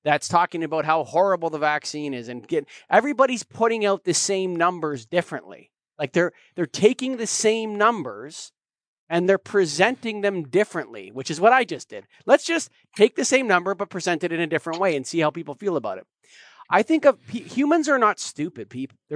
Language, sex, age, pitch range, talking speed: English, male, 30-49, 145-200 Hz, 195 wpm